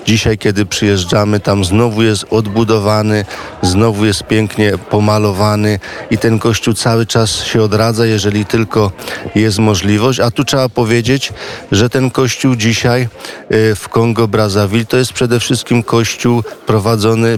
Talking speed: 135 wpm